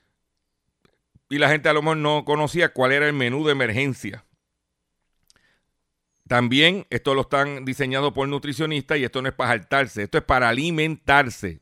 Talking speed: 160 wpm